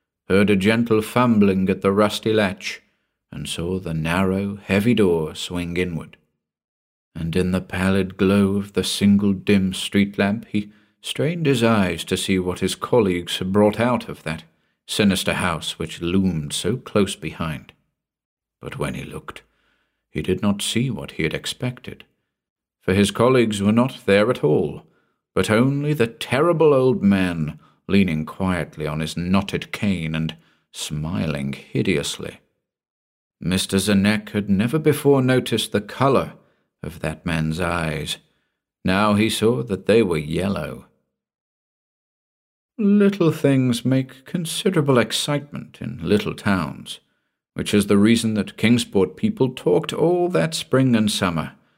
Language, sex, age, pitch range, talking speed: English, male, 50-69, 90-115 Hz, 145 wpm